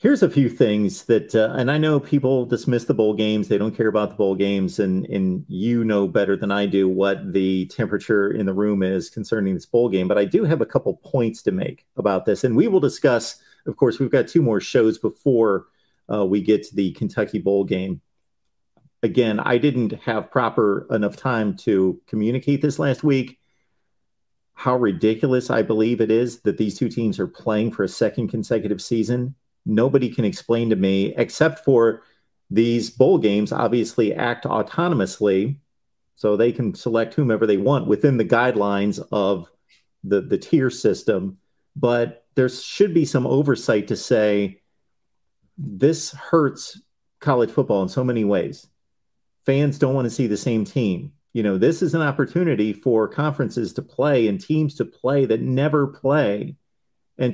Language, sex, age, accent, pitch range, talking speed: English, male, 40-59, American, 105-135 Hz, 180 wpm